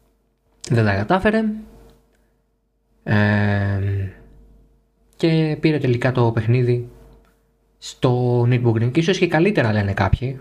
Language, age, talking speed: Greek, 20-39, 90 wpm